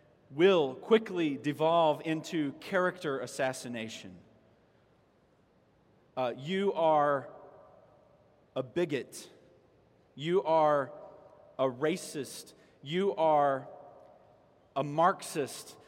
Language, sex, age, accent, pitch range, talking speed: English, male, 40-59, American, 140-195 Hz, 70 wpm